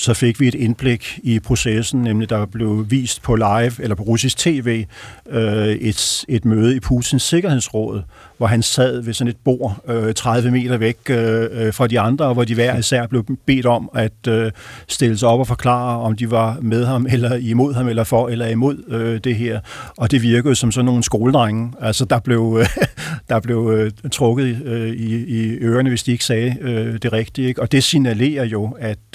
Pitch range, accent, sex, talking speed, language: 115-130 Hz, native, male, 205 wpm, Danish